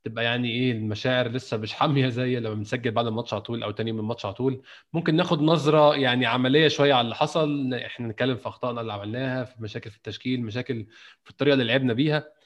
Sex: male